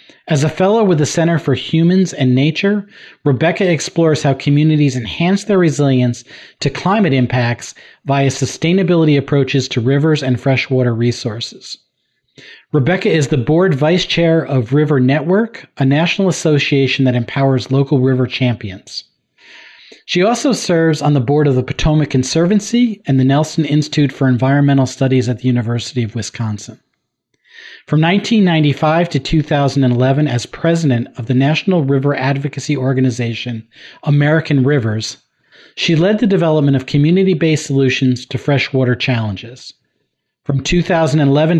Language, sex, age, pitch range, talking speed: English, male, 40-59, 130-165 Hz, 135 wpm